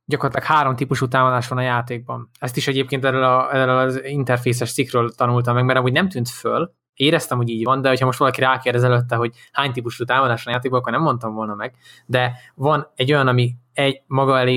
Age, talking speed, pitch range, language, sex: 20-39, 225 wpm, 125-140 Hz, Hungarian, male